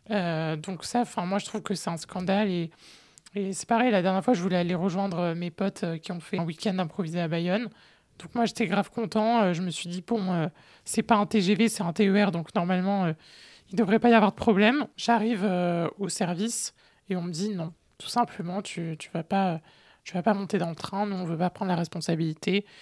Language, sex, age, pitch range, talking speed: French, male, 20-39, 175-210 Hz, 235 wpm